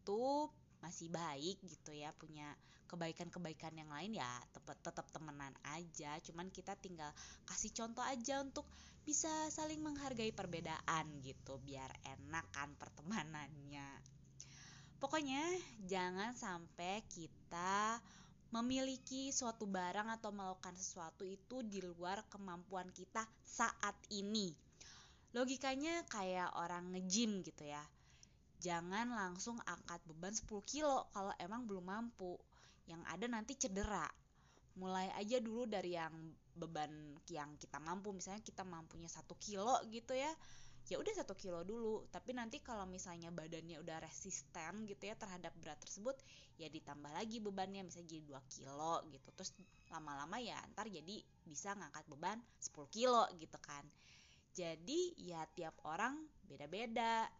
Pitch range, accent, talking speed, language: 155-220 Hz, native, 130 wpm, Indonesian